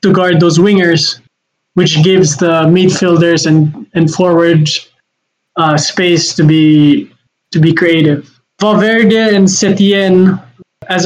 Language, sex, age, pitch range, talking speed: English, male, 20-39, 160-190 Hz, 120 wpm